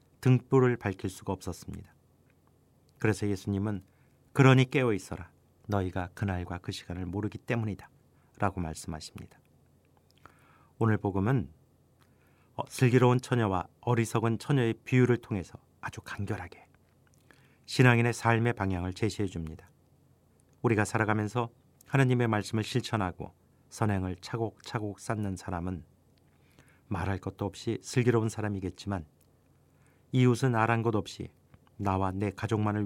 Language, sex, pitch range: Korean, male, 95-115 Hz